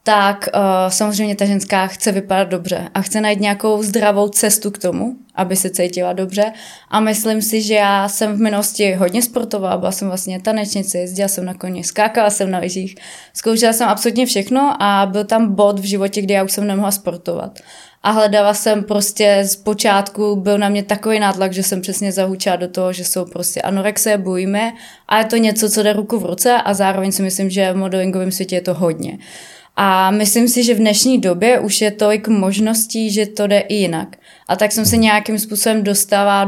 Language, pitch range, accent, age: Czech, 195-220 Hz, native, 20-39